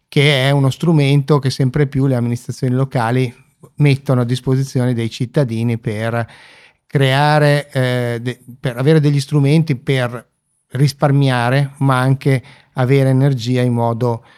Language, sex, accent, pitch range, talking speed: Italian, male, native, 120-140 Hz, 130 wpm